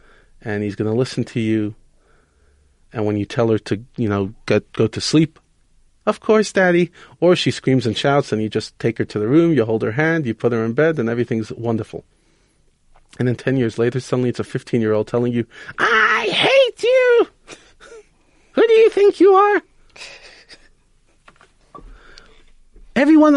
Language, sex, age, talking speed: English, male, 40-59, 170 wpm